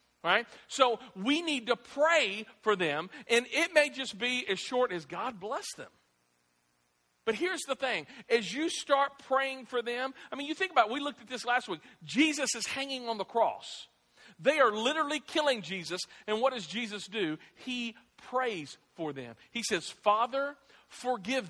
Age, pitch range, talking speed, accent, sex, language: 50-69, 190-250 Hz, 180 wpm, American, male, English